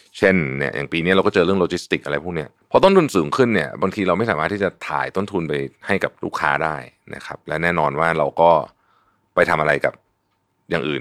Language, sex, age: Thai, male, 30-49